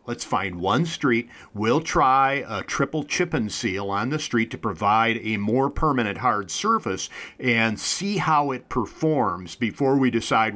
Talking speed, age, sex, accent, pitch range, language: 165 wpm, 50-69, male, American, 110-135 Hz, English